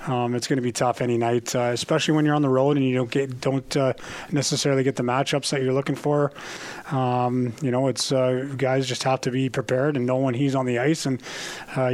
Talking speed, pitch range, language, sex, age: 245 wpm, 125-135 Hz, English, male, 30-49